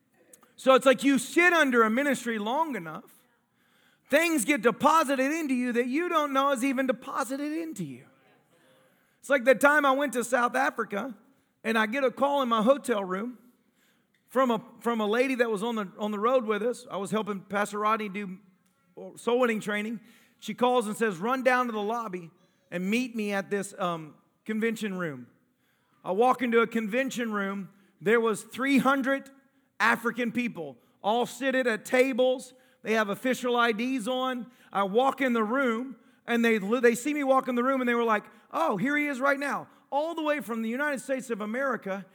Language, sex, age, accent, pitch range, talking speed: English, male, 40-59, American, 220-275 Hz, 190 wpm